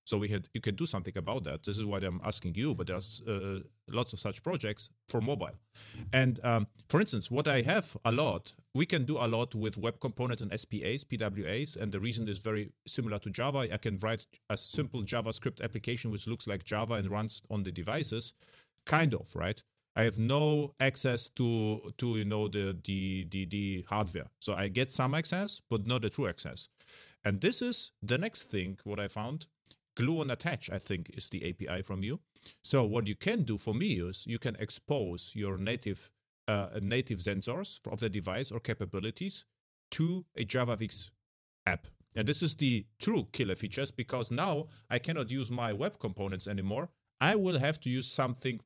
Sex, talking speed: male, 200 wpm